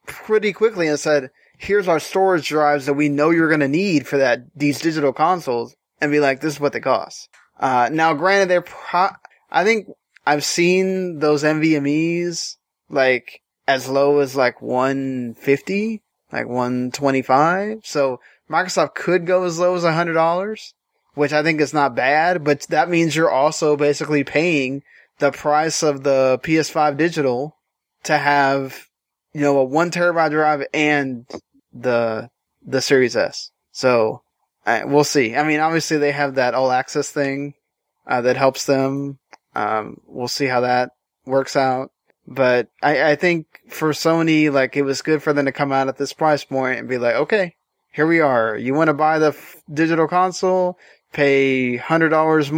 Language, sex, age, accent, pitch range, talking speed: English, male, 20-39, American, 135-160 Hz, 165 wpm